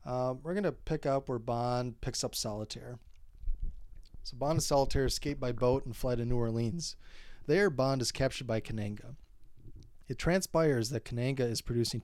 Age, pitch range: 30-49, 115-135 Hz